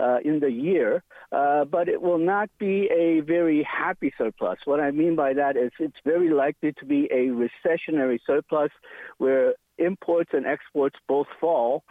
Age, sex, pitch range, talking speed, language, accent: 50-69, male, 135-170 Hz, 170 wpm, English, American